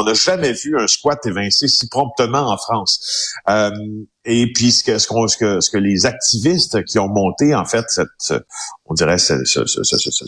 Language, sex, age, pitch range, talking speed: French, male, 50-69, 110-150 Hz, 210 wpm